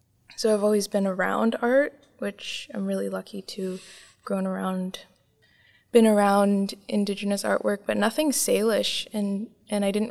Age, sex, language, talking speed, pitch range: 20-39, female, English, 150 wpm, 190-230 Hz